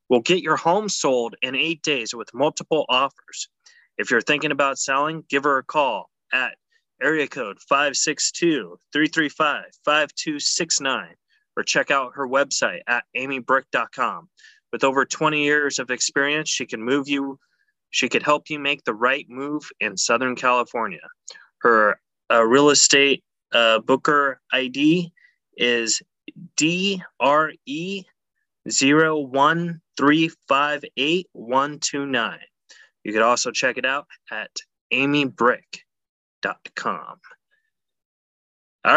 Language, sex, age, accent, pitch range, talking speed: English, male, 20-39, American, 135-170 Hz, 115 wpm